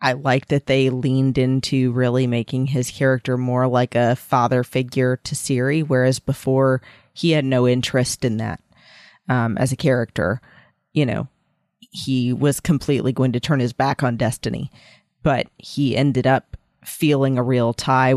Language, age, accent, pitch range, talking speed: English, 30-49, American, 125-140 Hz, 160 wpm